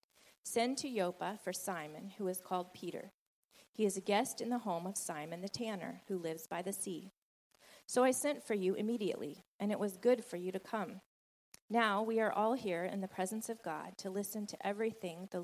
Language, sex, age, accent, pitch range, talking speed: English, female, 30-49, American, 185-215 Hz, 210 wpm